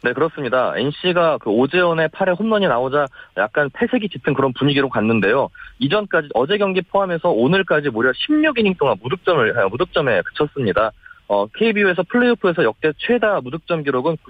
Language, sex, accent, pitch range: Korean, male, native, 150-225 Hz